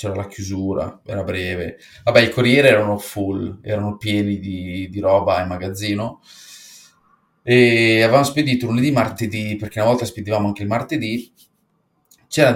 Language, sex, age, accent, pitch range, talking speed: Italian, male, 30-49, native, 100-120 Hz, 145 wpm